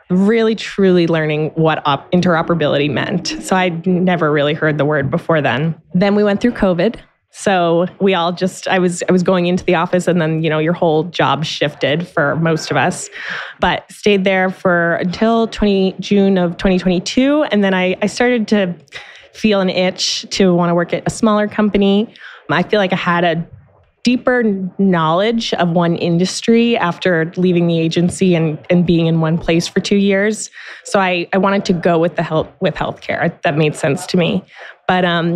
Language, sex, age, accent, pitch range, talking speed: English, female, 20-39, American, 170-195 Hz, 195 wpm